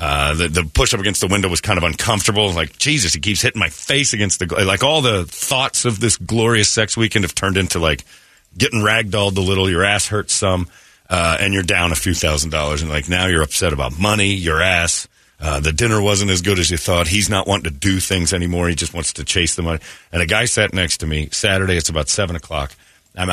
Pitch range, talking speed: 85-110 Hz, 245 wpm